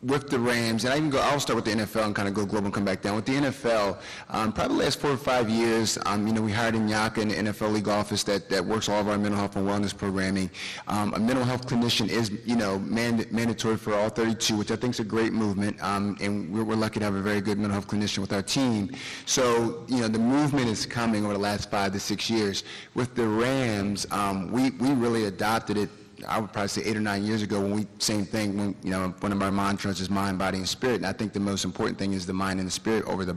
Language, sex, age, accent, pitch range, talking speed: English, male, 30-49, American, 100-115 Hz, 280 wpm